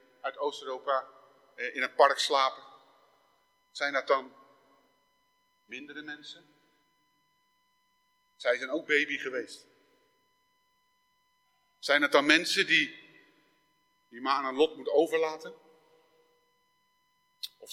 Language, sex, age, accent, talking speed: Dutch, male, 50-69, Dutch, 95 wpm